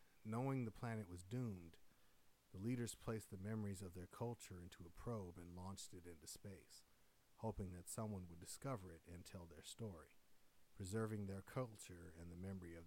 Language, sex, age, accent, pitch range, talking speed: English, male, 50-69, American, 90-110 Hz, 175 wpm